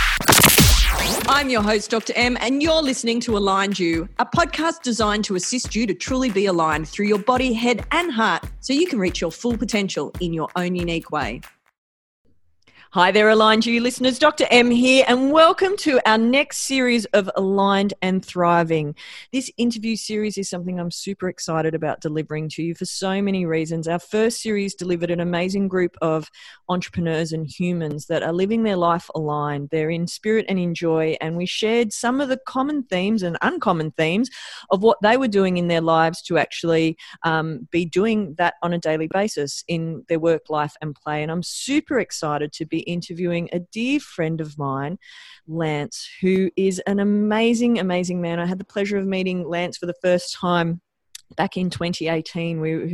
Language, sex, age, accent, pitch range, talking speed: English, female, 40-59, Australian, 165-220 Hz, 185 wpm